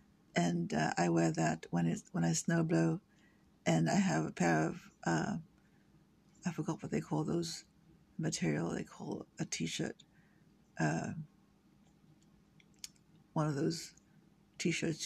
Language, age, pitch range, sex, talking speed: English, 60-79, 150-175 Hz, female, 135 wpm